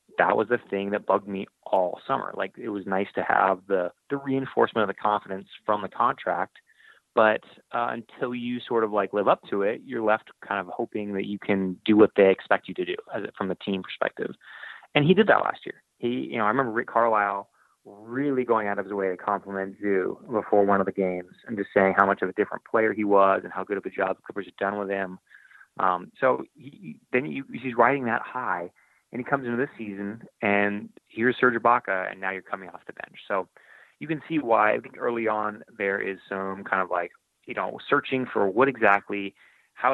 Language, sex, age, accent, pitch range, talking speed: English, male, 30-49, American, 95-115 Hz, 230 wpm